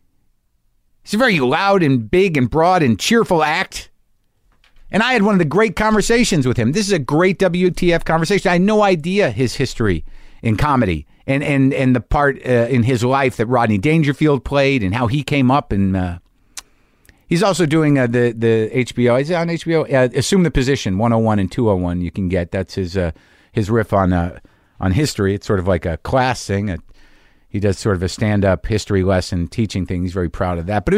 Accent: American